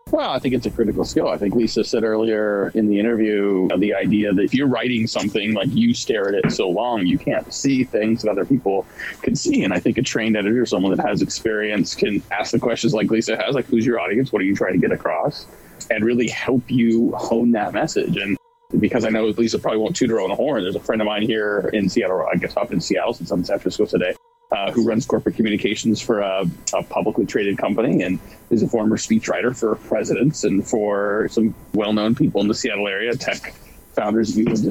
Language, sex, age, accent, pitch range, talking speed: English, male, 30-49, American, 105-130 Hz, 235 wpm